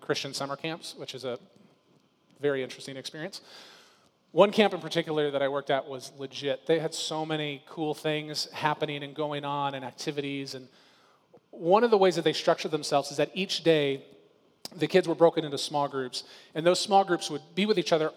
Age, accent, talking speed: 30-49, American, 200 wpm